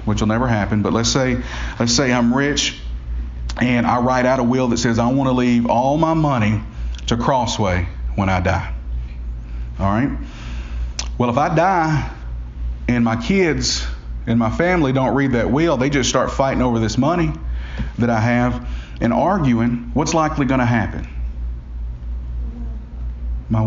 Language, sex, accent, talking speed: English, male, American, 160 wpm